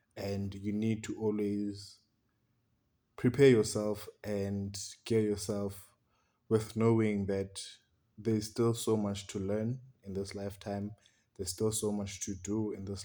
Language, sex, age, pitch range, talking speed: English, male, 20-39, 100-110 Hz, 140 wpm